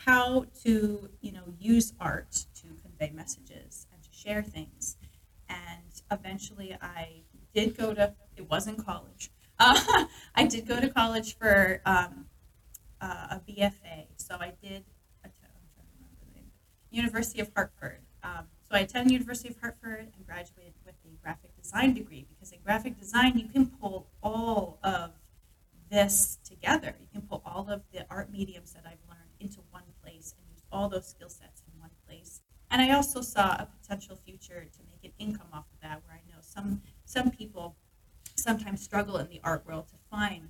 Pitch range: 165-225 Hz